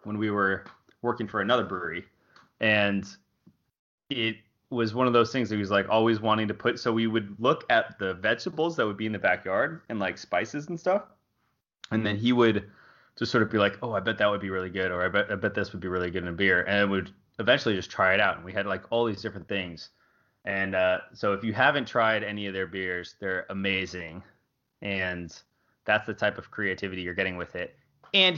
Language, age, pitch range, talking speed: English, 20-39, 95-115 Hz, 235 wpm